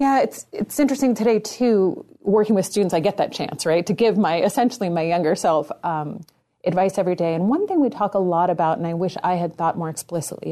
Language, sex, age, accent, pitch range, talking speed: English, female, 30-49, American, 165-200 Hz, 235 wpm